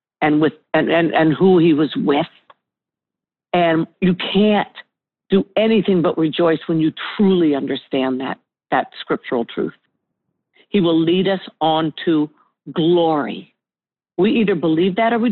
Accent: American